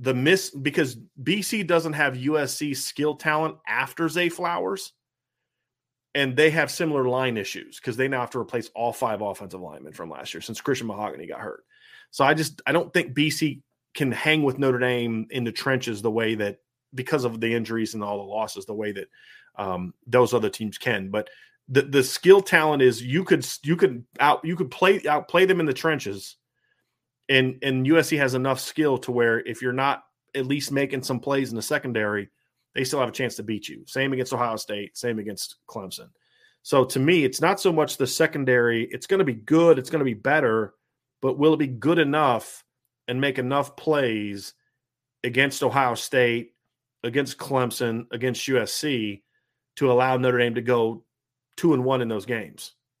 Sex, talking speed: male, 195 wpm